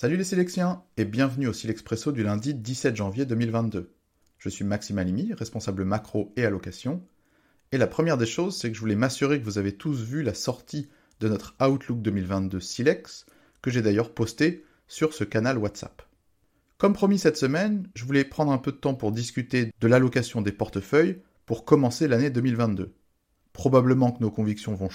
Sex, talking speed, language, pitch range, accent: male, 185 wpm, English, 105-140 Hz, French